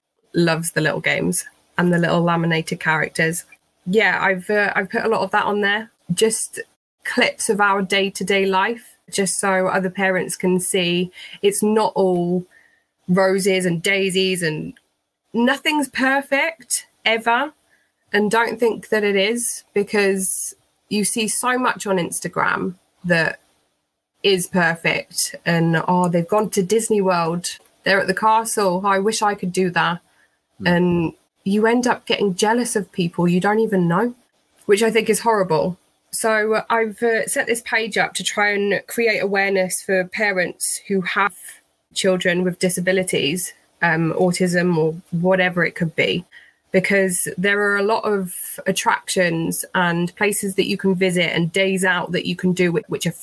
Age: 20-39